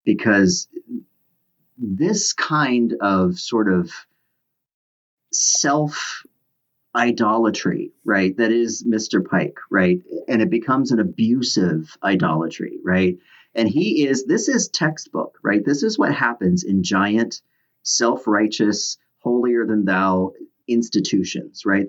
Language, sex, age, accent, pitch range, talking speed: English, male, 40-59, American, 100-135 Hz, 100 wpm